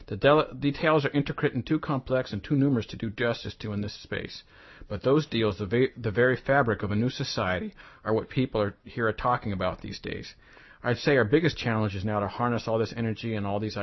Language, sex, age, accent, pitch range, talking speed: English, male, 40-59, American, 105-130 Hz, 225 wpm